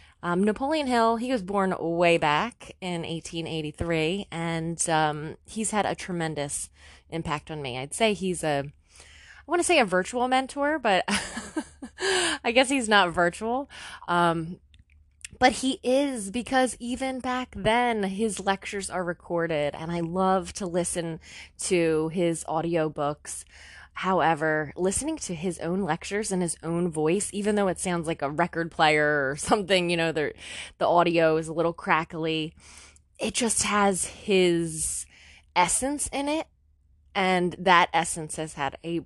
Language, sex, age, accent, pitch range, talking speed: English, female, 20-39, American, 155-205 Hz, 150 wpm